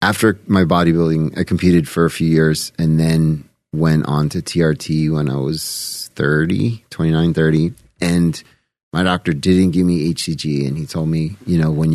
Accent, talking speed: American, 175 wpm